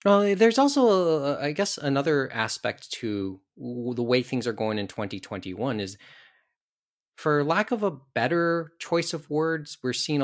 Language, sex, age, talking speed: English, male, 20-39, 150 wpm